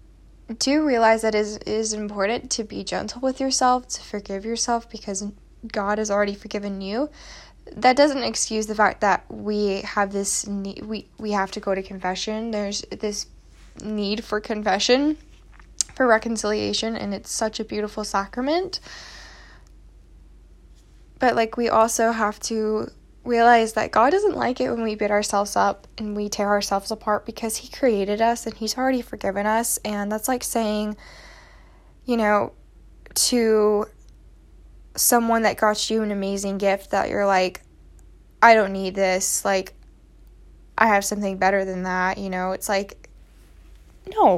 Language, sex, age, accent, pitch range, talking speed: English, female, 10-29, American, 205-250 Hz, 155 wpm